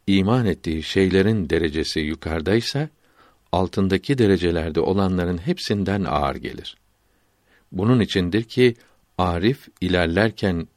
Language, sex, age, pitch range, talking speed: Turkish, male, 60-79, 90-110 Hz, 90 wpm